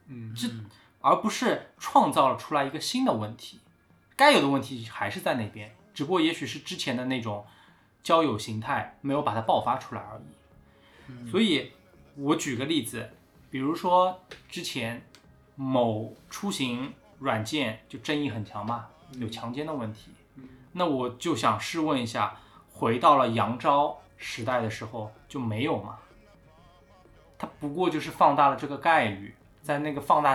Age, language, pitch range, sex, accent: 20-39, Chinese, 110-150 Hz, male, native